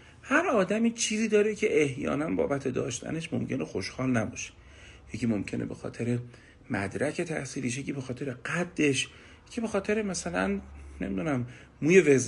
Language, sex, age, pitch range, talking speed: Persian, male, 40-59, 120-175 Hz, 135 wpm